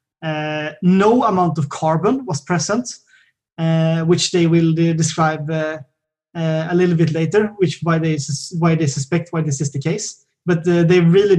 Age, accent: 20-39, Swedish